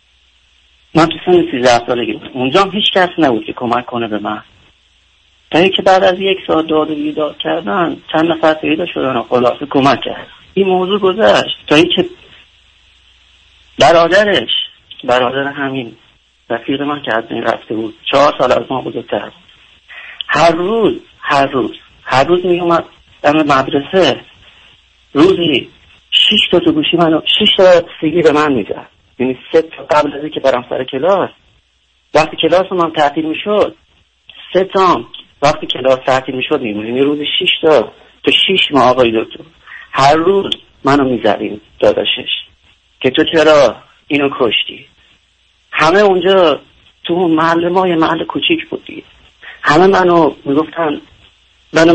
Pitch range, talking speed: 120-180 Hz, 140 wpm